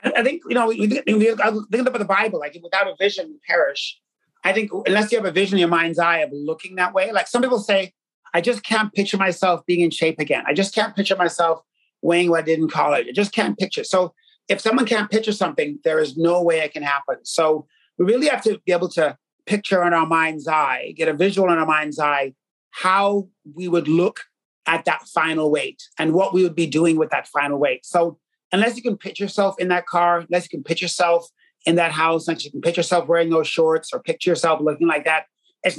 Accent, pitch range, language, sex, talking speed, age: American, 165-205 Hz, English, male, 235 wpm, 30-49